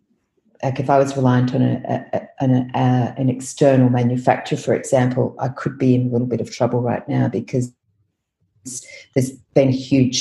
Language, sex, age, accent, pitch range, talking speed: English, female, 50-69, Australian, 120-130 Hz, 160 wpm